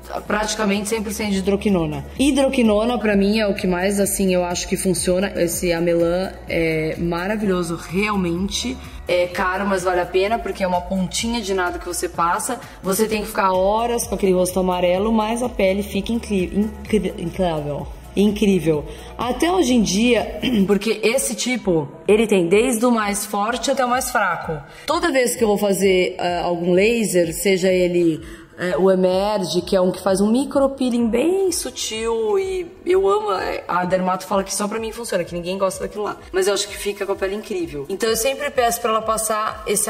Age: 20-39